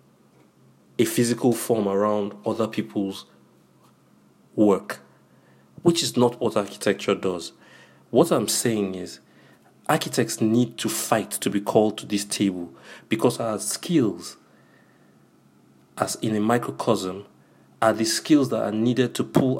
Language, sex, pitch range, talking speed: English, male, 95-115 Hz, 130 wpm